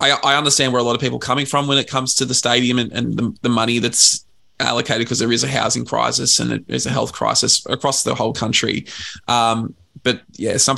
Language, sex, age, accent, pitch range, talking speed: English, male, 20-39, Australian, 110-125 Hz, 230 wpm